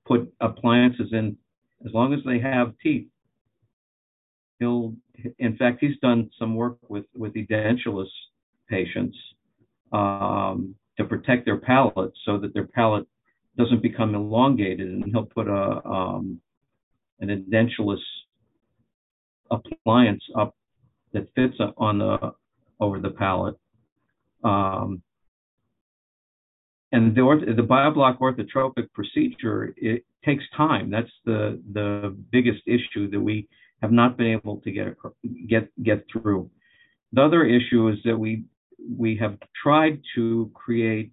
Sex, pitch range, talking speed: male, 105-125 Hz, 125 wpm